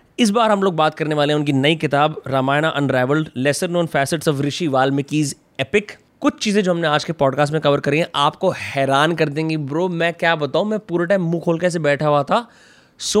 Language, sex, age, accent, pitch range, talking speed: Hindi, male, 20-39, native, 145-180 Hz, 210 wpm